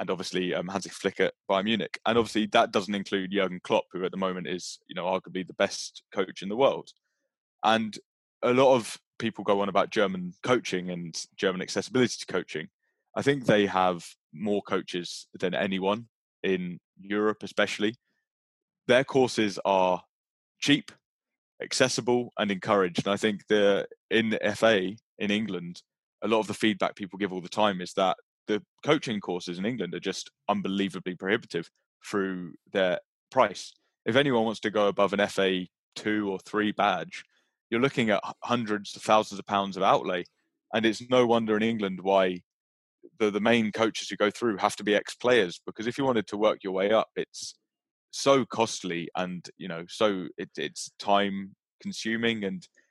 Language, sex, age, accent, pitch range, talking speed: English, male, 20-39, British, 95-115 Hz, 175 wpm